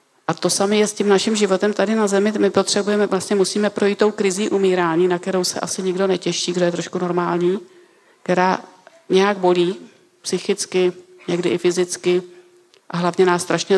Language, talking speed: Czech, 175 wpm